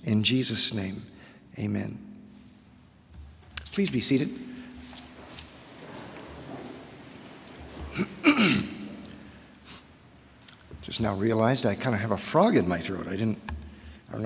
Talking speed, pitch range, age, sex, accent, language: 95 wpm, 120-190 Hz, 50-69, male, American, English